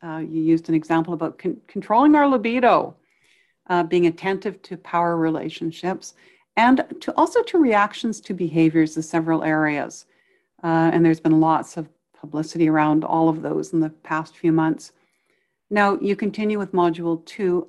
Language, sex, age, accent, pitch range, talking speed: English, female, 60-79, American, 160-200 Hz, 155 wpm